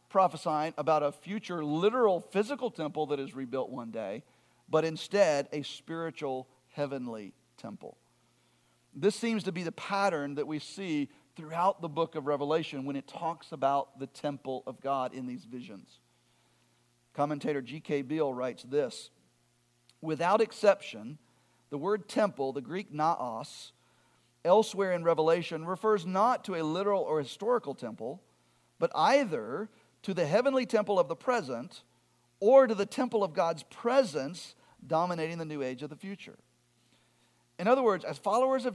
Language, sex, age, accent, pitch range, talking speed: English, male, 50-69, American, 140-210 Hz, 150 wpm